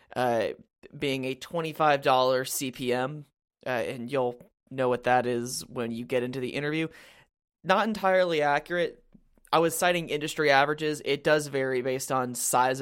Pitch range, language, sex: 130-150 Hz, English, male